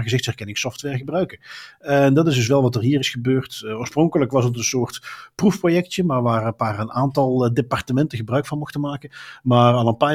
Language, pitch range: Dutch, 110-140 Hz